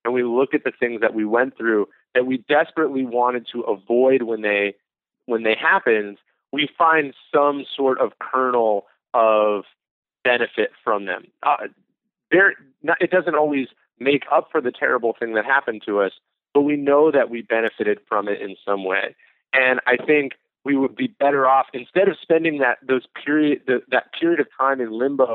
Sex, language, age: male, English, 30-49